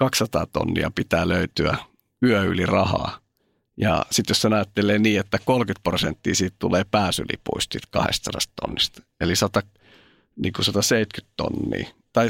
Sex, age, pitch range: male, 50-69, 95-115 Hz